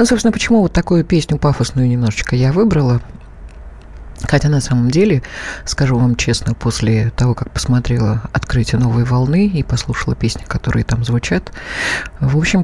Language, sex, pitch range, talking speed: Russian, female, 120-160 Hz, 150 wpm